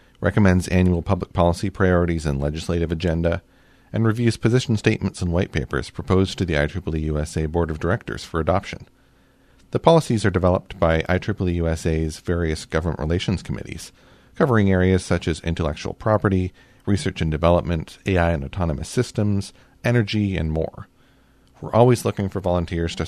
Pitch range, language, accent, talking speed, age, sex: 85-105 Hz, English, American, 150 wpm, 40-59, male